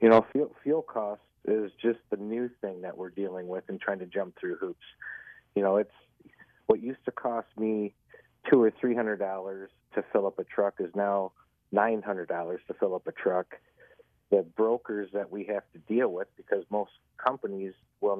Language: English